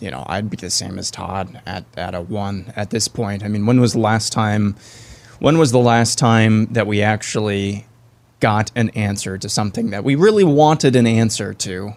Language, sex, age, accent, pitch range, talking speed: English, male, 20-39, American, 110-125 Hz, 210 wpm